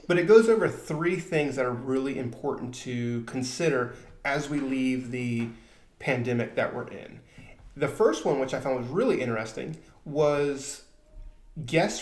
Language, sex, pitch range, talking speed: English, male, 125-155 Hz, 155 wpm